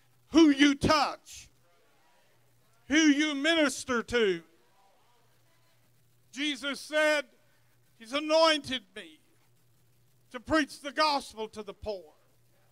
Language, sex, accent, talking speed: English, male, American, 90 wpm